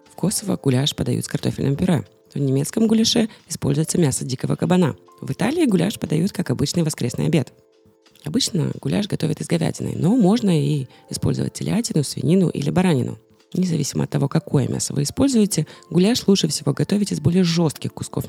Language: Russian